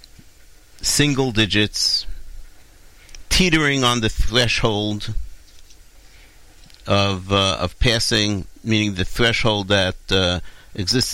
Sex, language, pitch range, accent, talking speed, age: male, English, 95-115 Hz, American, 85 wpm, 50-69